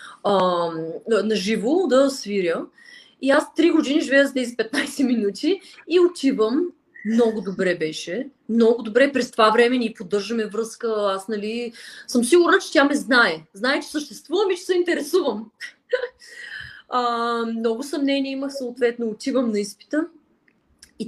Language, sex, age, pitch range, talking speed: Bulgarian, female, 20-39, 220-285 Hz, 145 wpm